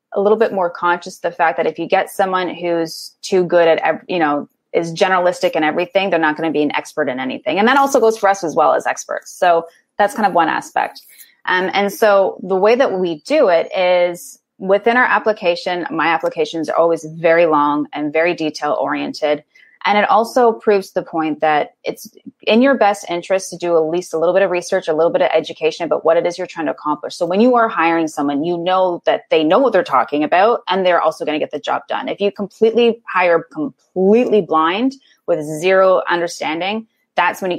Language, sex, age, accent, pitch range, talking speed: English, female, 20-39, American, 165-205 Hz, 225 wpm